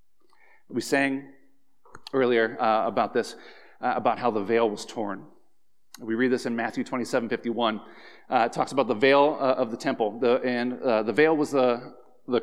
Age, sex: 40-59, male